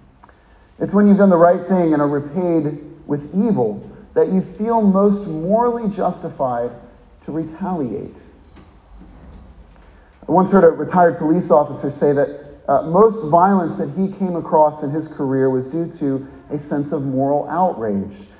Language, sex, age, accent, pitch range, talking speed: English, male, 40-59, American, 135-190 Hz, 155 wpm